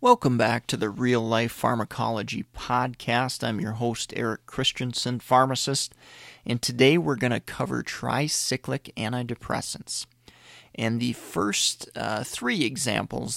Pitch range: 115-135 Hz